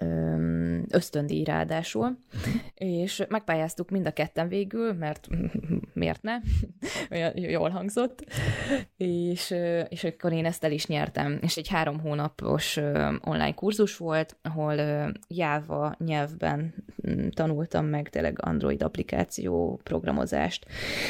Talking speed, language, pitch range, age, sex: 110 wpm, Hungarian, 145-175 Hz, 20-39, female